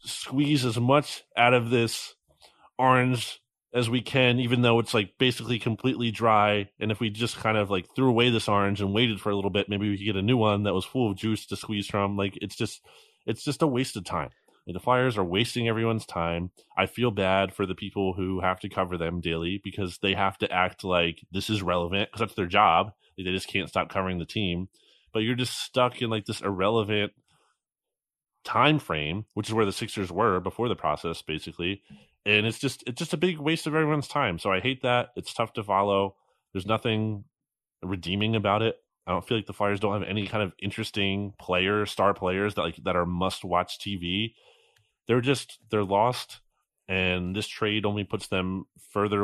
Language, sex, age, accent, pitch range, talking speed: English, male, 20-39, American, 95-115 Hz, 215 wpm